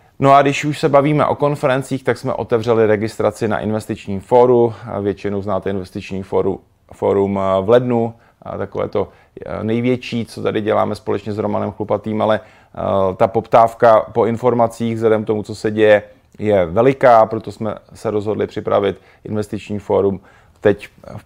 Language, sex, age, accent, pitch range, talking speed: Czech, male, 30-49, native, 100-115 Hz, 150 wpm